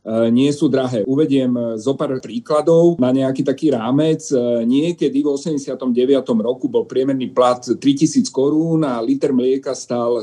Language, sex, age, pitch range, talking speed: Slovak, male, 40-59, 120-145 Hz, 135 wpm